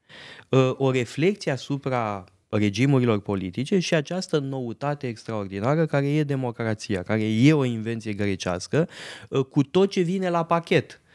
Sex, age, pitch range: male, 20-39, 110-150 Hz